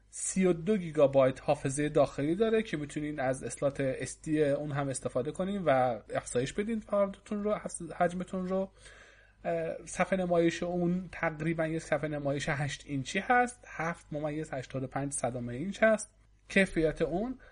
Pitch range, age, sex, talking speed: 145-195 Hz, 30-49, male, 120 wpm